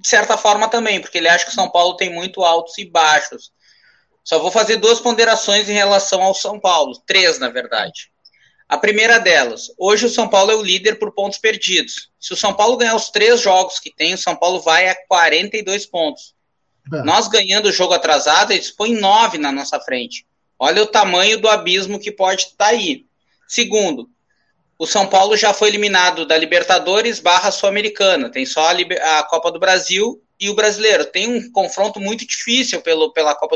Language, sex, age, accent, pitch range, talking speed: Portuguese, male, 20-39, Brazilian, 180-225 Hz, 195 wpm